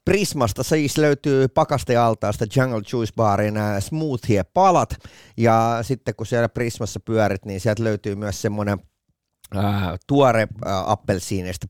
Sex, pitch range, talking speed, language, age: male, 95-130 Hz, 115 wpm, Finnish, 30-49